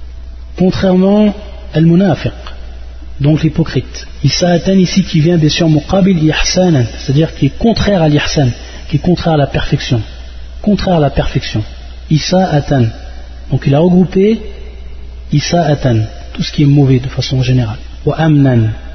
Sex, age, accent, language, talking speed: male, 40-59, French, French, 135 wpm